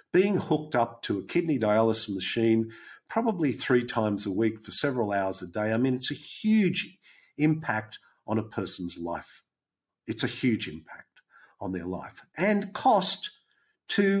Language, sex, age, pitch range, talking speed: English, male, 50-69, 110-175 Hz, 160 wpm